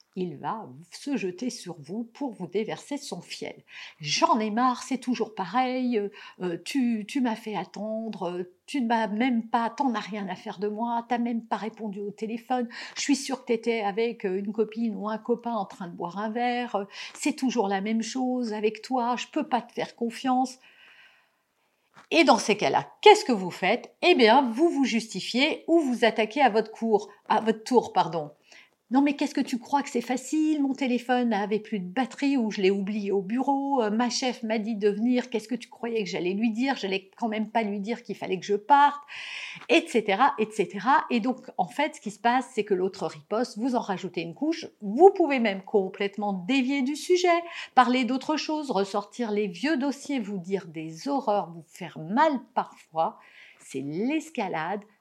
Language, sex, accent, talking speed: French, female, French, 205 wpm